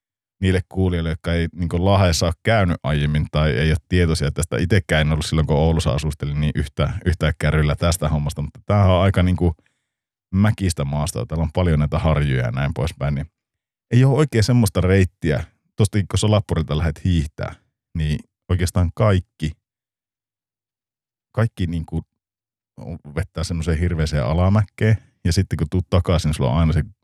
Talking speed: 160 wpm